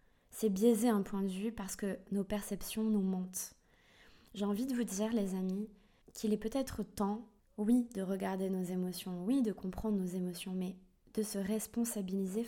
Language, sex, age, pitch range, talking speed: French, female, 20-39, 190-215 Hz, 180 wpm